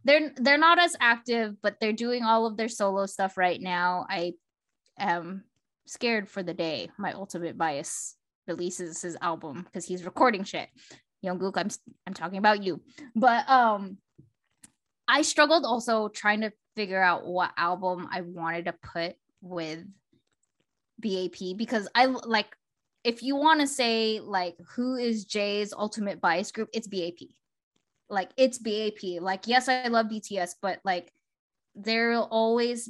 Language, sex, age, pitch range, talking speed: English, female, 10-29, 185-235 Hz, 155 wpm